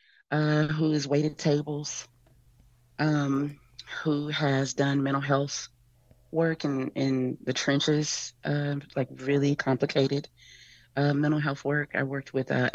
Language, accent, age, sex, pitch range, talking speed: English, American, 30-49, female, 125-145 Hz, 130 wpm